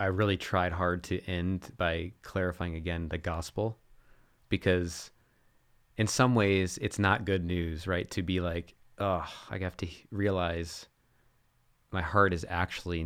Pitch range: 90-105 Hz